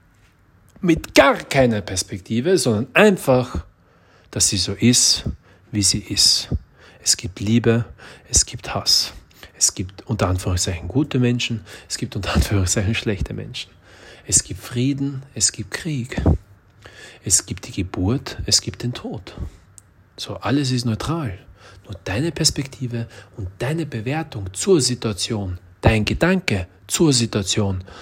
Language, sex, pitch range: German, male, 100-125 Hz